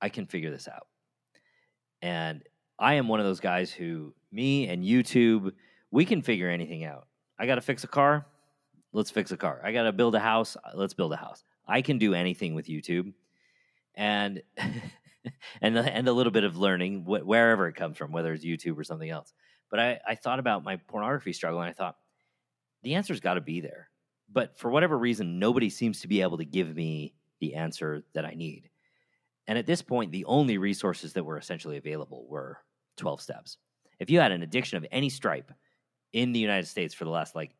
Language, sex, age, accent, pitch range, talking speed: English, male, 40-59, American, 80-115 Hz, 205 wpm